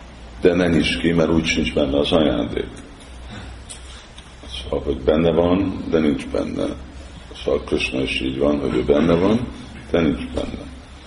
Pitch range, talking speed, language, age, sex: 70-80 Hz, 155 wpm, Hungarian, 50-69, male